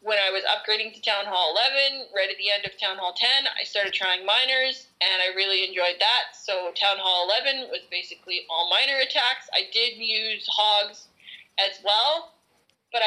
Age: 20-39